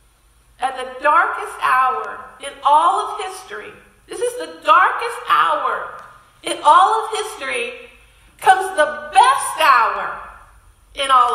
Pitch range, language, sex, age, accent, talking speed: 240-360 Hz, English, female, 50-69, American, 120 wpm